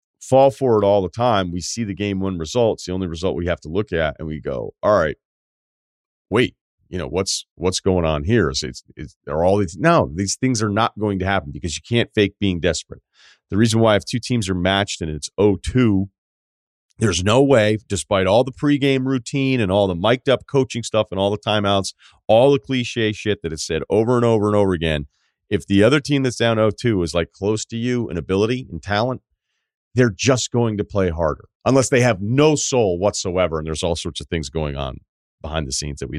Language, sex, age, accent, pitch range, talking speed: English, male, 40-59, American, 90-115 Hz, 225 wpm